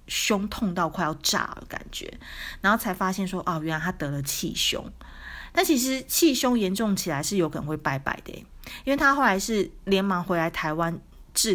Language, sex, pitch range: Chinese, female, 160-200 Hz